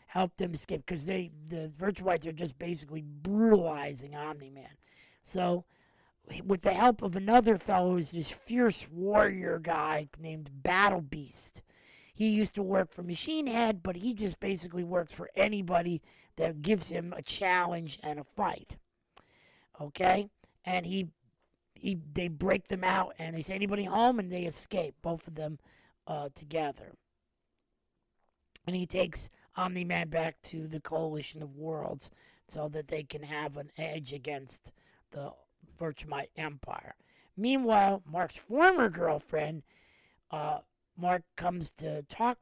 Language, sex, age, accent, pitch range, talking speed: English, male, 40-59, American, 155-195 Hz, 140 wpm